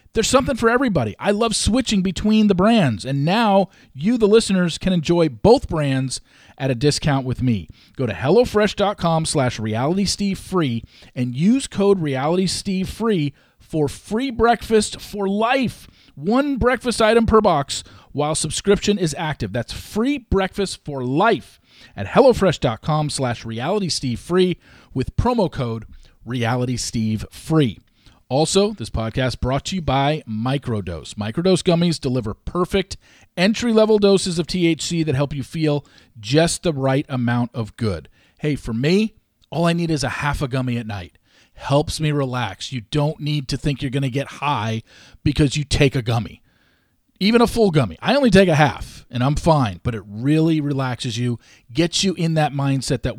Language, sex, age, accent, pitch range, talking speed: English, male, 40-59, American, 125-185 Hz, 160 wpm